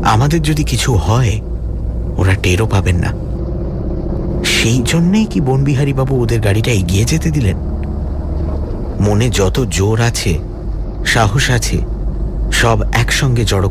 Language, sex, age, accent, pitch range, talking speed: Bengali, male, 60-79, native, 90-120 Hz, 120 wpm